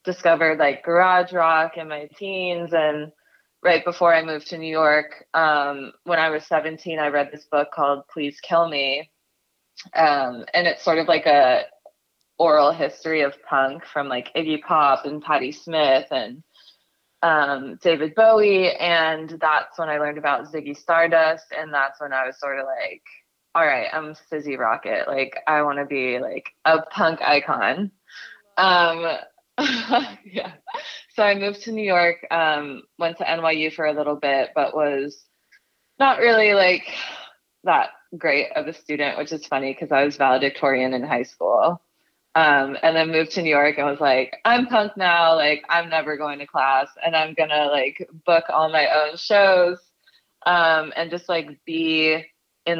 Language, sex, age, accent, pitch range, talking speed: English, female, 20-39, American, 145-170 Hz, 170 wpm